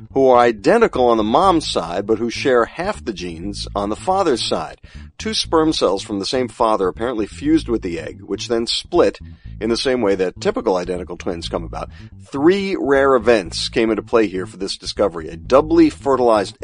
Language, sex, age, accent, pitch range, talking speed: English, male, 40-59, American, 95-130 Hz, 200 wpm